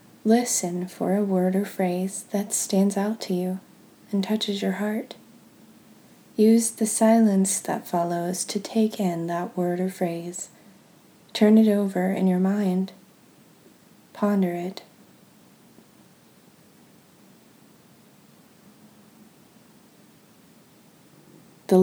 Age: 30-49